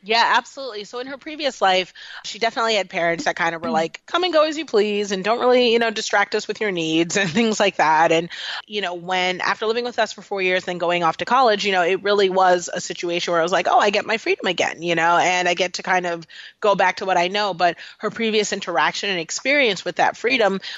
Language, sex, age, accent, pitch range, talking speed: English, female, 30-49, American, 170-215 Hz, 265 wpm